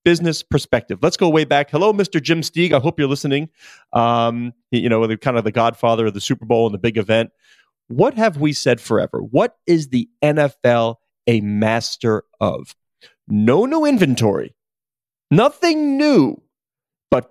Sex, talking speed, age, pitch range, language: male, 165 wpm, 30-49, 125-205 Hz, English